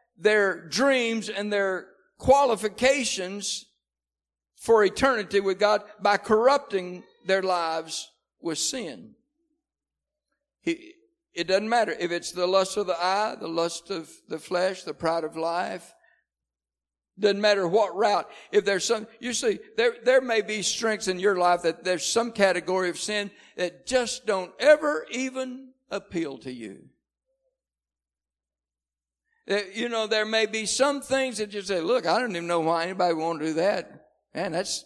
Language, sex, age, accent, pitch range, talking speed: English, male, 60-79, American, 145-235 Hz, 155 wpm